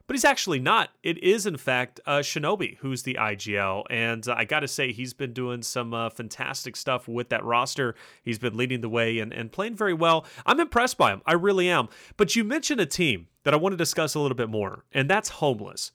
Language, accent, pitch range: English, American, 115-170 Hz